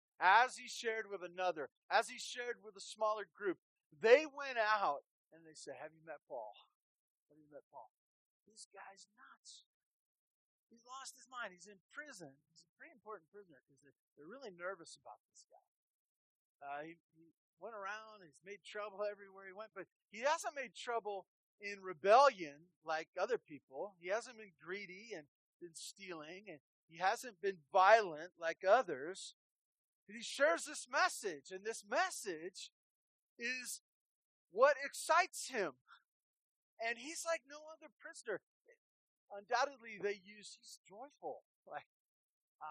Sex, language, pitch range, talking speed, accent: male, English, 165-235 Hz, 155 wpm, American